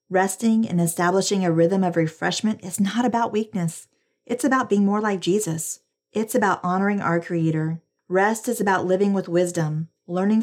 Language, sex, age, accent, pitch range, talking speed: English, female, 40-59, American, 165-210 Hz, 165 wpm